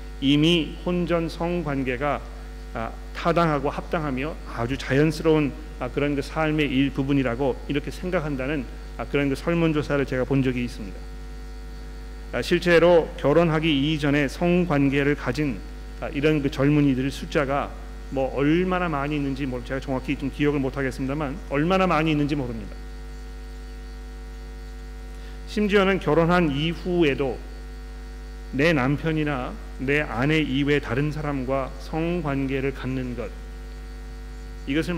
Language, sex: Korean, male